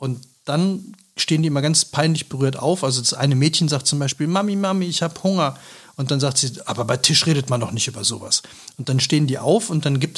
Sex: male